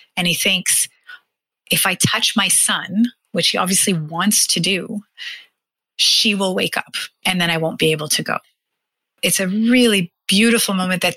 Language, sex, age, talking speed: English, female, 30-49, 170 wpm